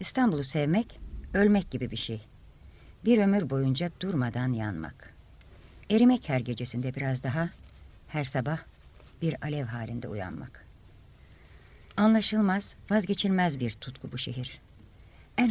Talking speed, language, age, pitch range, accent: 110 wpm, Turkish, 60-79, 110-155 Hz, native